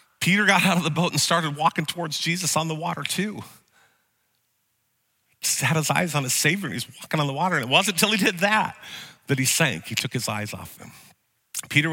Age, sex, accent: 40-59, male, American